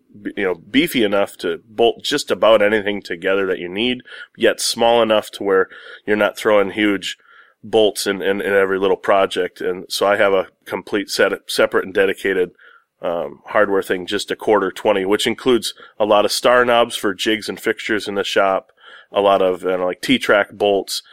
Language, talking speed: English, 195 wpm